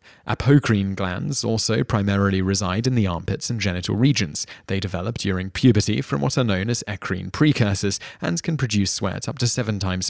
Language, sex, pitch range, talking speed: English, male, 100-120 Hz, 180 wpm